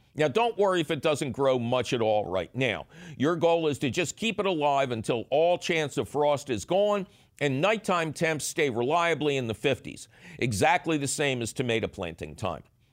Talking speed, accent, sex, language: 195 wpm, American, male, English